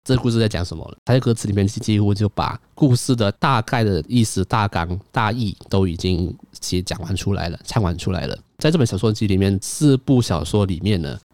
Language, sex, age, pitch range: Chinese, male, 20-39, 90-115 Hz